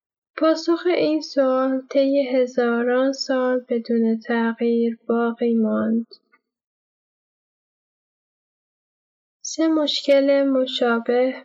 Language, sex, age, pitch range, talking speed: Persian, female, 10-29, 245-270 Hz, 70 wpm